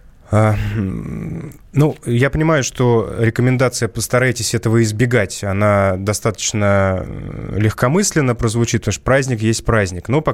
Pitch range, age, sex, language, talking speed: 100-120 Hz, 20-39, male, Russian, 110 wpm